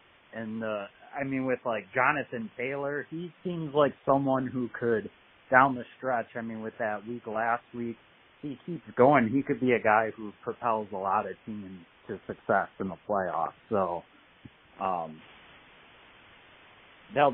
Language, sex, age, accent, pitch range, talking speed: English, male, 30-49, American, 110-145 Hz, 155 wpm